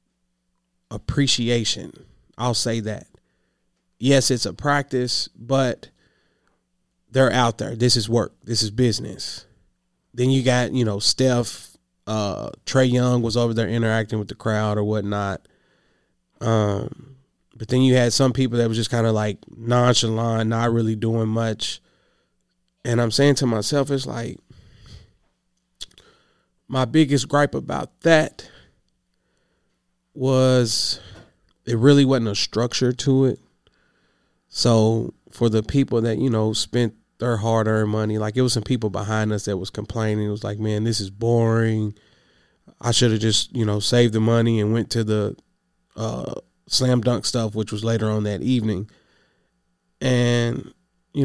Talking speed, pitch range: 150 wpm, 105-125 Hz